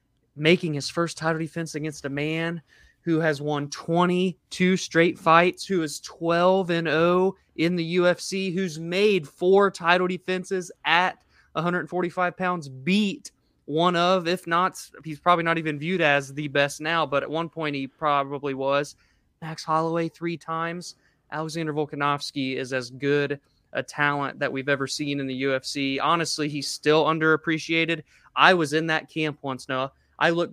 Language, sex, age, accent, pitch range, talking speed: English, male, 20-39, American, 140-170 Hz, 160 wpm